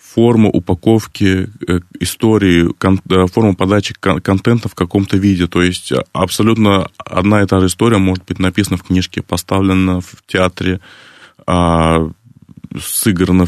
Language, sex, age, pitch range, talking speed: Russian, male, 20-39, 85-100 Hz, 130 wpm